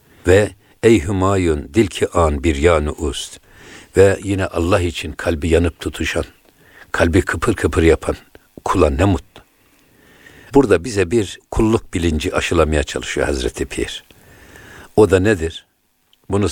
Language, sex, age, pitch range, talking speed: Turkish, male, 60-79, 80-95 Hz, 130 wpm